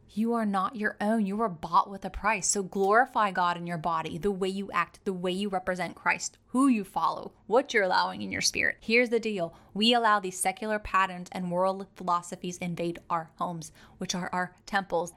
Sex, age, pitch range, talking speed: female, 20-39, 175-210 Hz, 210 wpm